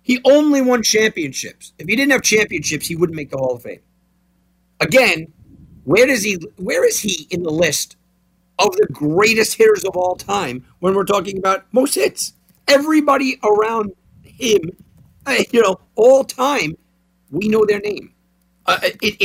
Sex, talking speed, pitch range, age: male, 155 wpm, 150-235 Hz, 50-69